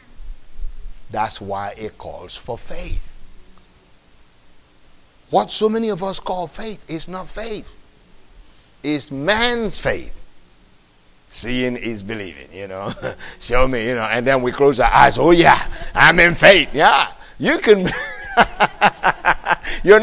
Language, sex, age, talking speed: English, male, 60-79, 130 wpm